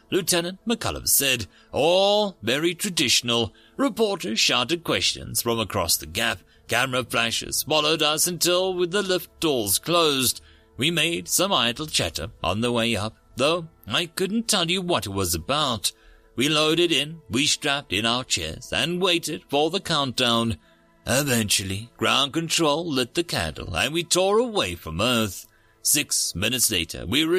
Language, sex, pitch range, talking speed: English, male, 110-180 Hz, 155 wpm